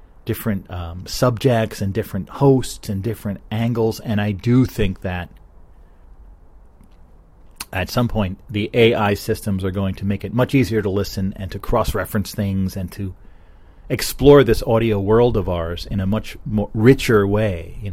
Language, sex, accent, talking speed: English, male, American, 160 wpm